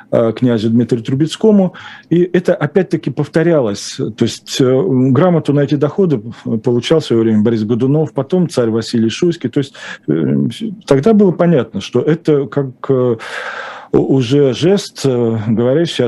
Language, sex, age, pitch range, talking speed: Russian, male, 40-59, 120-155 Hz, 125 wpm